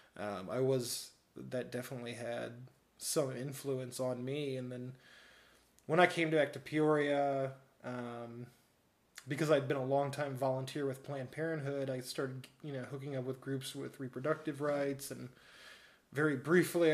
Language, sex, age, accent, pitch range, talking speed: English, male, 20-39, American, 125-150 Hz, 150 wpm